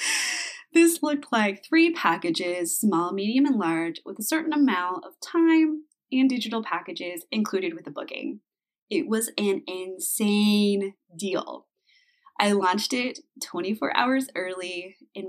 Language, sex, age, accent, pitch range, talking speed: English, female, 20-39, American, 180-275 Hz, 135 wpm